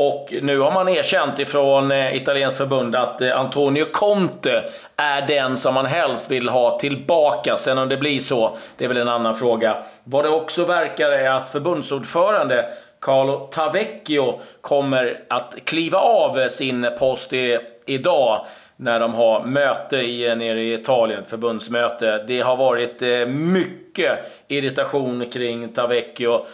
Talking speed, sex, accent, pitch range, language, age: 145 wpm, male, native, 120-140 Hz, Swedish, 30-49